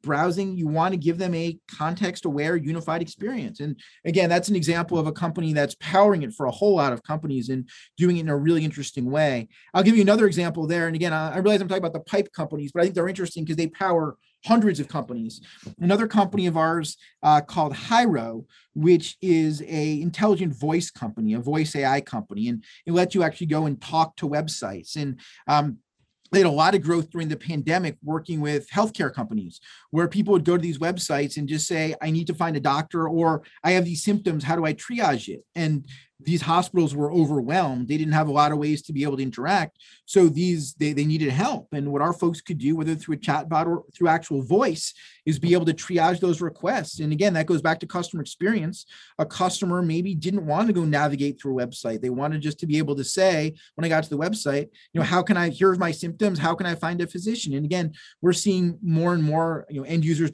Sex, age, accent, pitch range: male, 30-49, American, 150-180 Hz